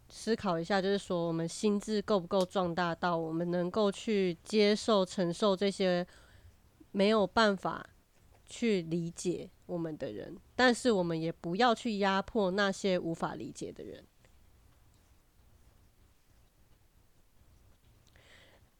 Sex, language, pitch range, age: female, Chinese, 170-215 Hz, 30-49